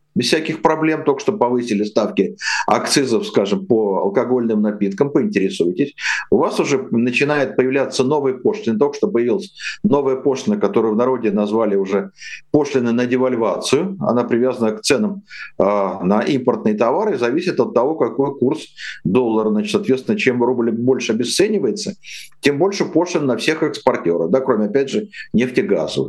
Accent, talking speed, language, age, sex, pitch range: native, 150 wpm, Russian, 50-69, male, 130-180 Hz